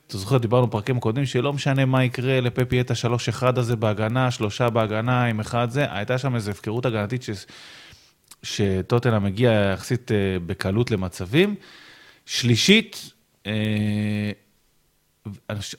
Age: 30-49